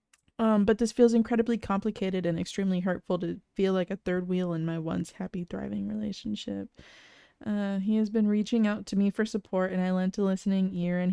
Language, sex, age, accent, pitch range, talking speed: English, female, 20-39, American, 180-205 Hz, 205 wpm